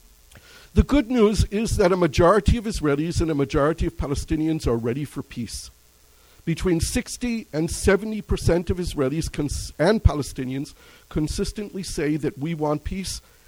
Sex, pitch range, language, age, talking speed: male, 125-195 Hz, English, 50-69, 140 wpm